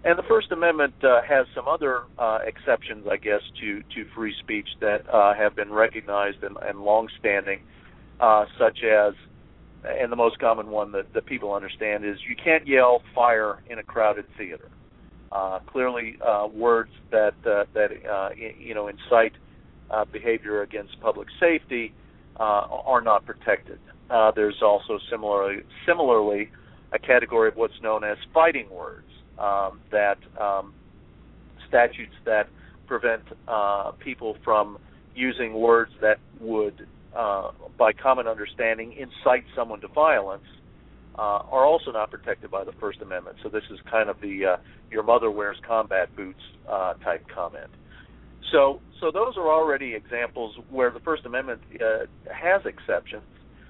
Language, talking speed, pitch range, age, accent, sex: English, 150 wpm, 100-120 Hz, 50-69, American, male